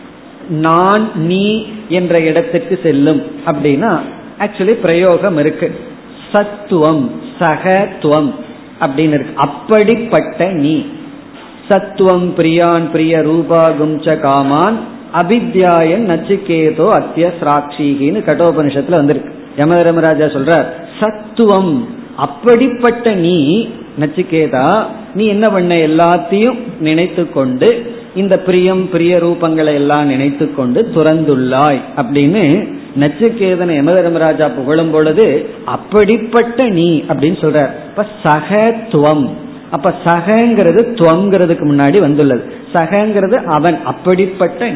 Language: Tamil